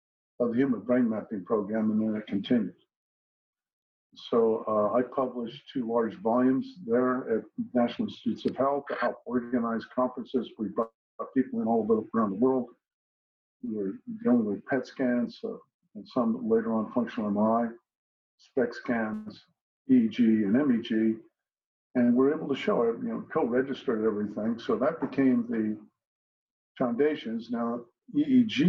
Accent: American